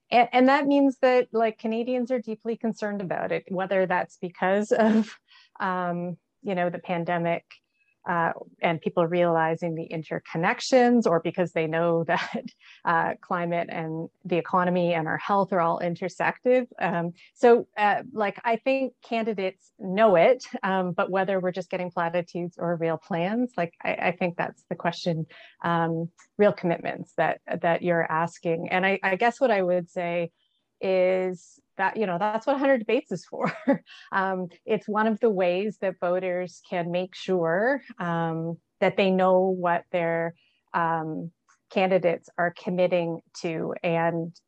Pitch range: 170-210 Hz